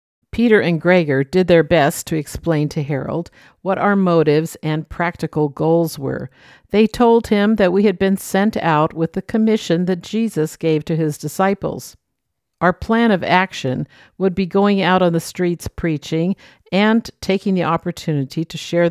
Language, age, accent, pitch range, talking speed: English, 50-69, American, 155-190 Hz, 170 wpm